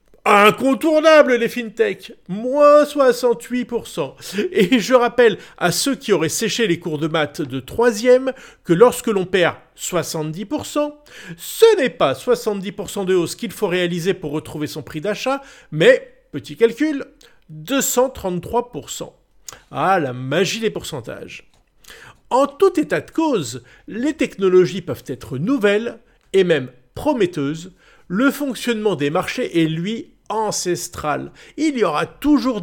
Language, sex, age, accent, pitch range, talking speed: French, male, 50-69, French, 170-260 Hz, 130 wpm